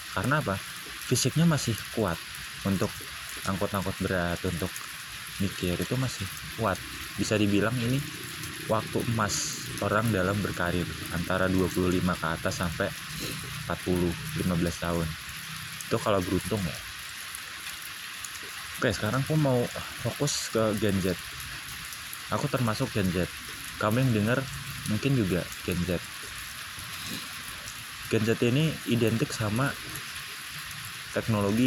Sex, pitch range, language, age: male, 95-115 Hz, Indonesian, 20-39